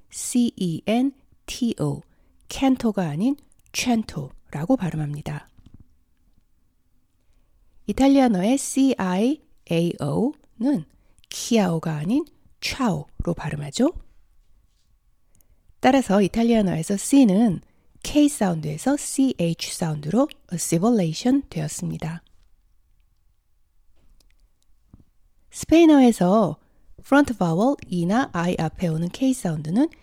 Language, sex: Korean, female